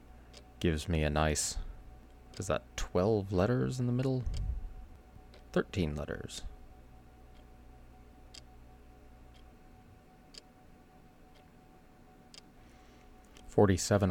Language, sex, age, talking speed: English, male, 30-49, 60 wpm